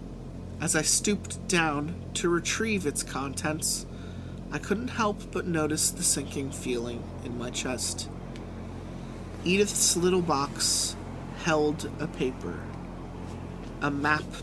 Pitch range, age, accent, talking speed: 115-150 Hz, 30-49, American, 110 wpm